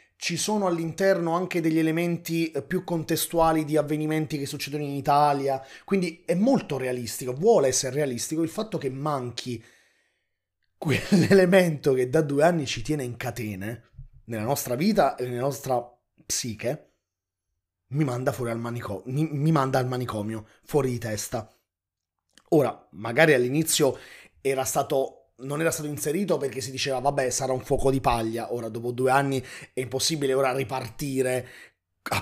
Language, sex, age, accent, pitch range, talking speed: Italian, male, 30-49, native, 125-160 Hz, 150 wpm